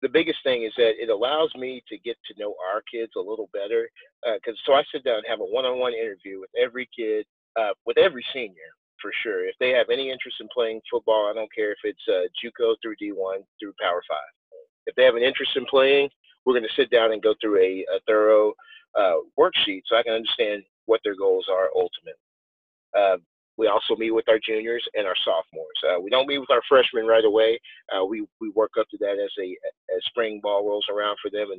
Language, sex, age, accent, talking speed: English, male, 30-49, American, 230 wpm